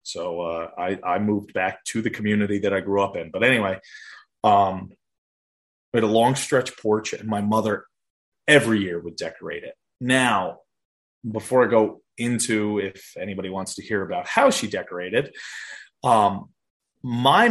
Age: 30-49